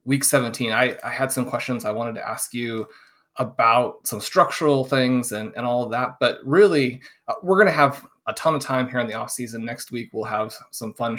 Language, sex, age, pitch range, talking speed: English, male, 30-49, 120-145 Hz, 225 wpm